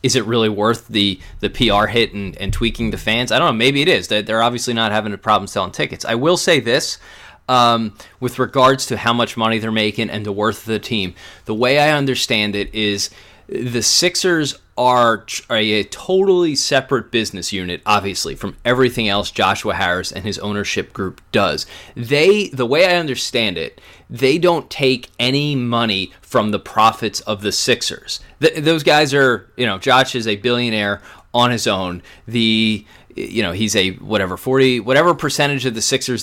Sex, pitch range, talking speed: male, 105-130 Hz, 185 wpm